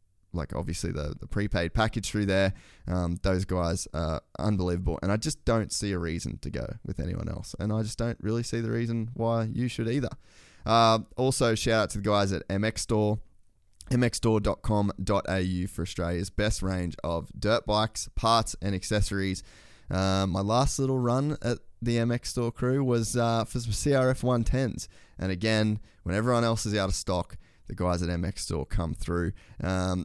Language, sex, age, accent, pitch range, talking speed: English, male, 20-39, Australian, 90-115 Hz, 180 wpm